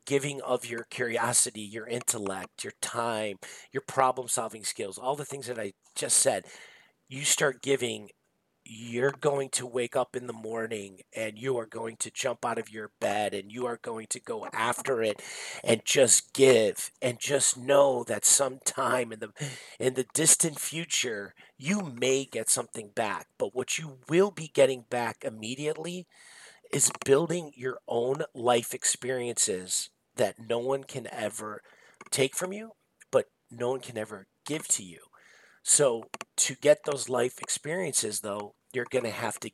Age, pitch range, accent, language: 40-59, 115-140 Hz, American, English